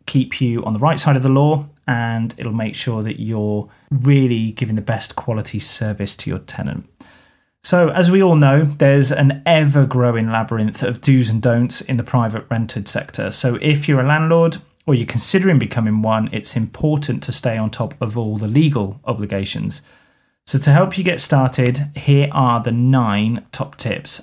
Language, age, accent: English, 30-49, British